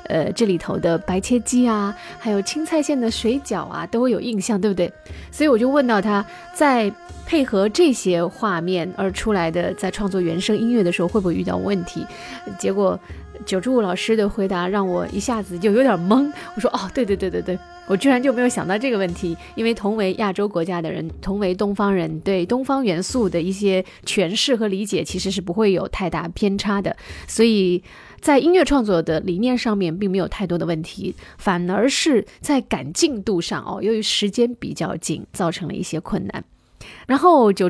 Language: Chinese